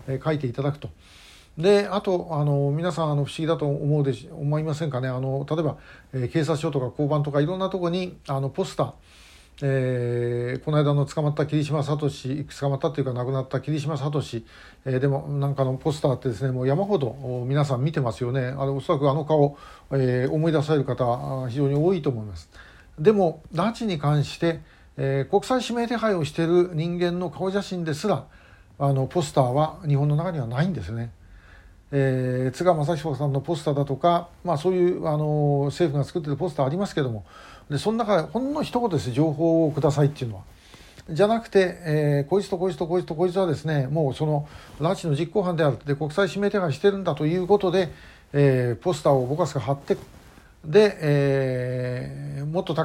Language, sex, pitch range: Japanese, male, 135-170 Hz